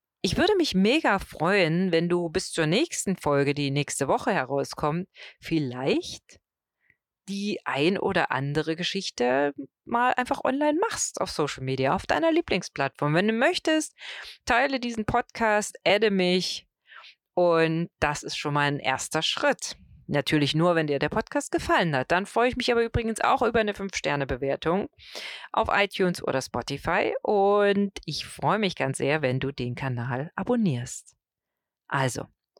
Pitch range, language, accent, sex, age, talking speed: 140-200 Hz, German, German, female, 40-59, 155 wpm